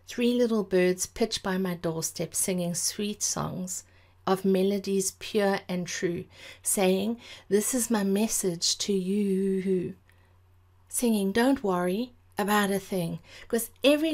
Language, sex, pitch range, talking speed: English, female, 180-225 Hz, 125 wpm